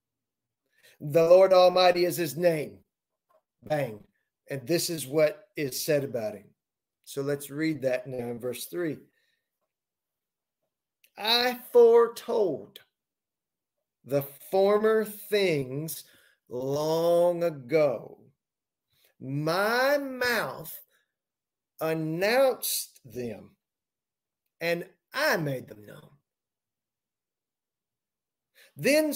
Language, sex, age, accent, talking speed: English, male, 40-59, American, 80 wpm